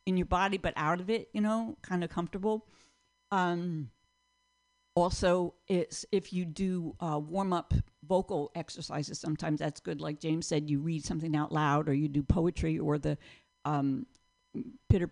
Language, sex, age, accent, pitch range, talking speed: English, female, 50-69, American, 145-195 Hz, 165 wpm